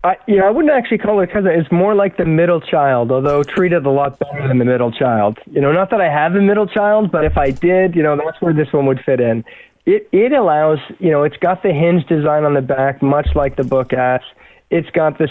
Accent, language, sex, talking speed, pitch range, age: American, English, male, 265 wpm, 140-170 Hz, 20-39